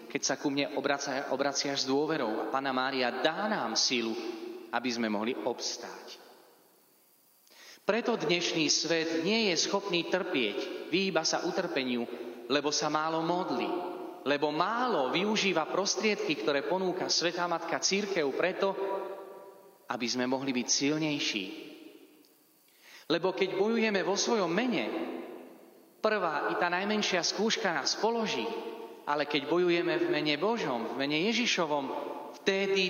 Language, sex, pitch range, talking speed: Slovak, male, 130-195 Hz, 130 wpm